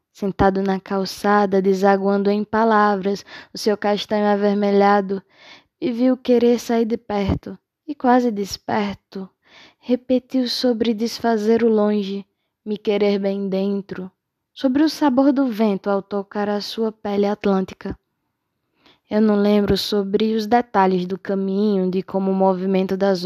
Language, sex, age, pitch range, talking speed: Portuguese, female, 10-29, 195-230 Hz, 135 wpm